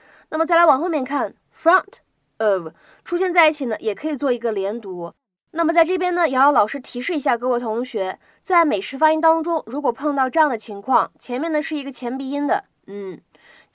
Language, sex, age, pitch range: Chinese, female, 20-39, 220-305 Hz